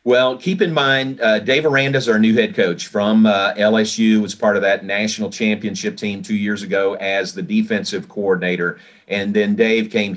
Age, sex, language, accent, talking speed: 40-59, male, English, American, 195 wpm